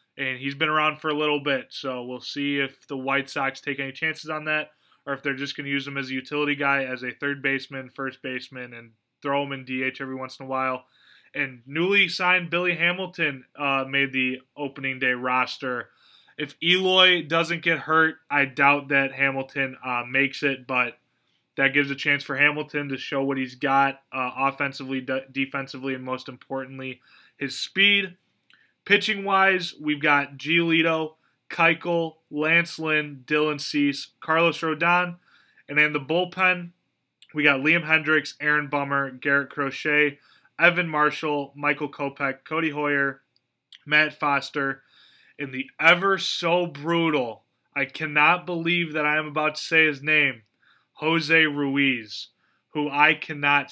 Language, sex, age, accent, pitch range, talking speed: English, male, 20-39, American, 135-155 Hz, 155 wpm